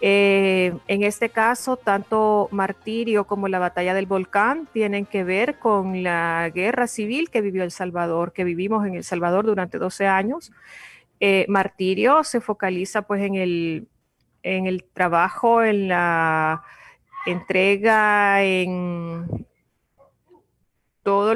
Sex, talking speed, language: female, 125 wpm, Spanish